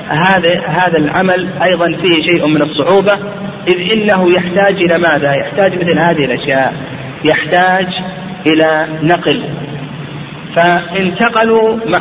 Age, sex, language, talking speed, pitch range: 40-59, male, Arabic, 105 wpm, 155-180 Hz